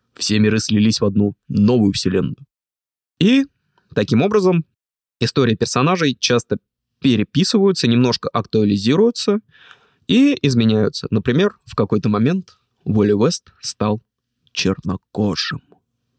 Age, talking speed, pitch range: 20-39, 95 wpm, 105-140 Hz